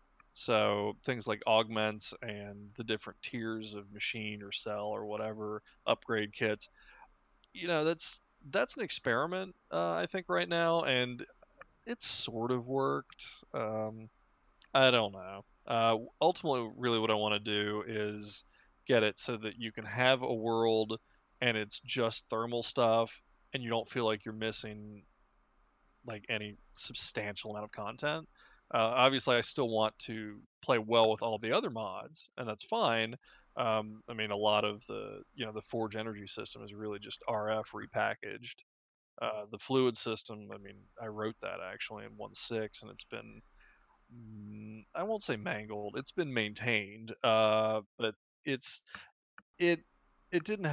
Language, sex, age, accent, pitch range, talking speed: English, male, 20-39, American, 105-120 Hz, 160 wpm